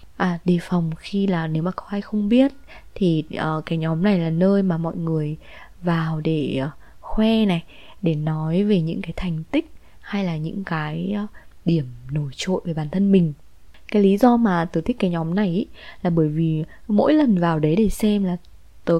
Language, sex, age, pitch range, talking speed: Vietnamese, female, 20-39, 170-220 Hz, 210 wpm